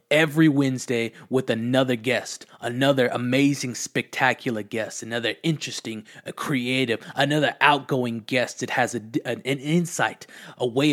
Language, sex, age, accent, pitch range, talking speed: English, male, 30-49, American, 125-160 Hz, 120 wpm